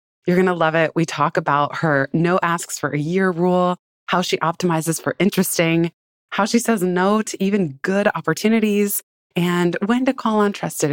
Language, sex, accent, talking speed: English, female, American, 185 wpm